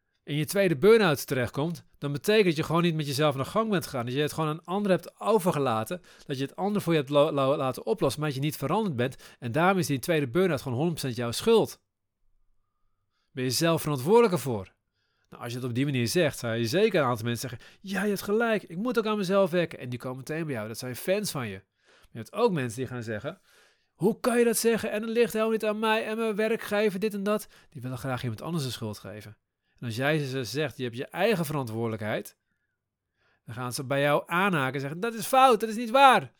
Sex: male